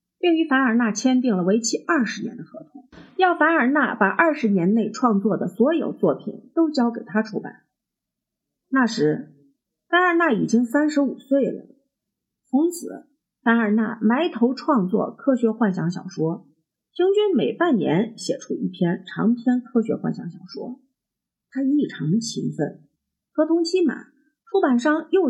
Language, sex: Chinese, female